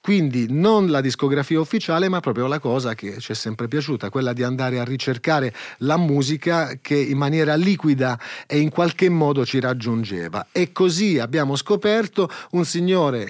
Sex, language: male, Italian